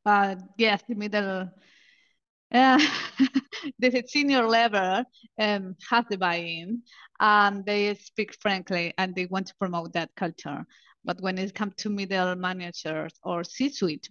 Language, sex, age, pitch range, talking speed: English, female, 30-49, 190-230 Hz, 140 wpm